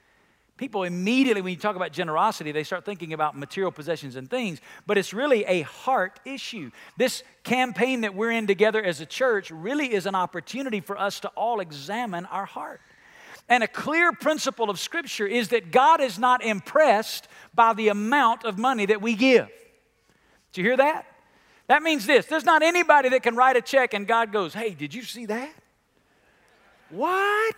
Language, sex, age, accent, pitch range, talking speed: English, male, 50-69, American, 215-300 Hz, 185 wpm